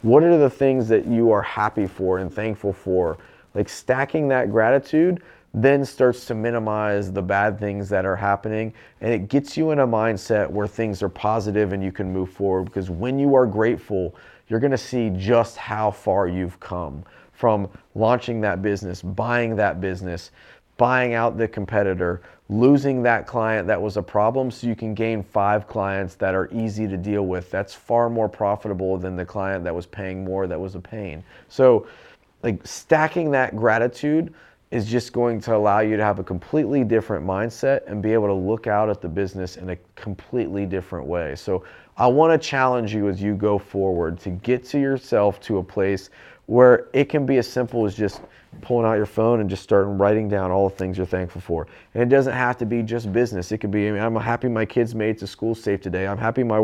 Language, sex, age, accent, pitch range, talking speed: English, male, 40-59, American, 100-120 Hz, 205 wpm